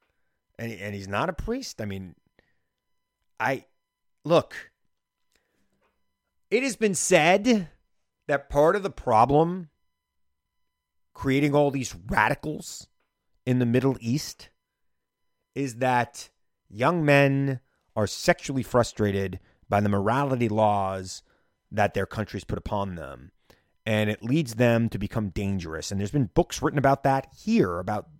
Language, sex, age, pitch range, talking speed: English, male, 30-49, 105-150 Hz, 125 wpm